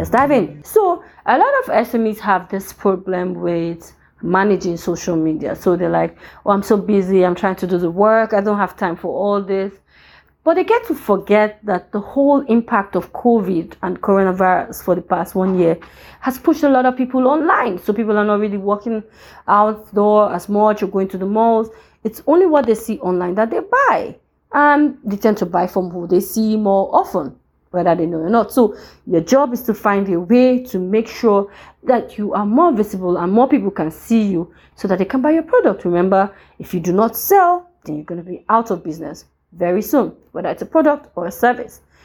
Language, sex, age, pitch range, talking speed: English, female, 30-49, 185-235 Hz, 215 wpm